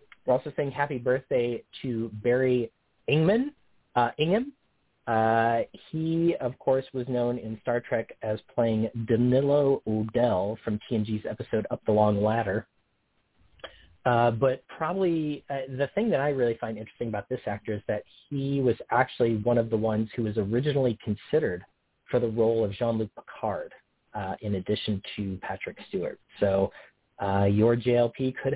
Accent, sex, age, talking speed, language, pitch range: American, male, 30-49, 155 wpm, English, 110-130 Hz